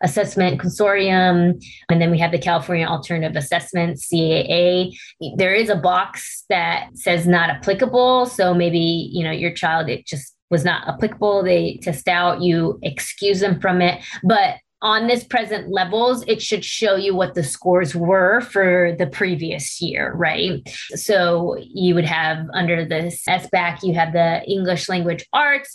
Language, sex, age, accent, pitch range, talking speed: English, female, 20-39, American, 175-215 Hz, 160 wpm